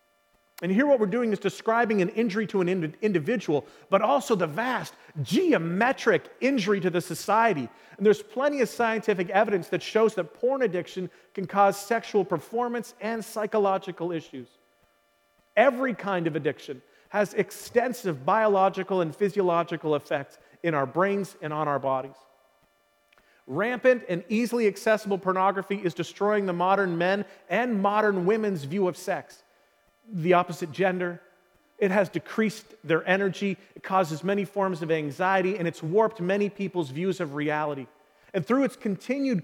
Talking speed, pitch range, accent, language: 150 wpm, 170-225 Hz, American, English